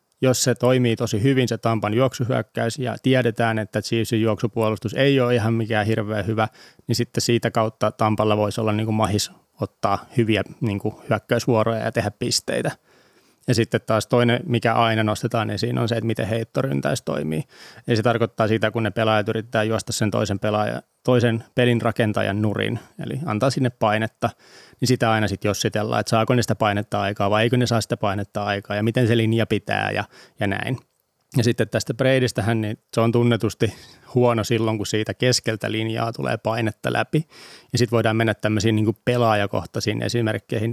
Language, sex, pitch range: Finnish, male, 110-120 Hz